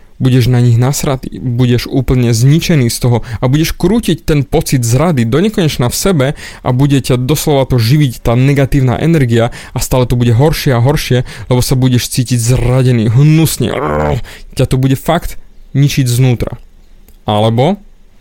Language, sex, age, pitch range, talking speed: Slovak, male, 20-39, 120-145 Hz, 160 wpm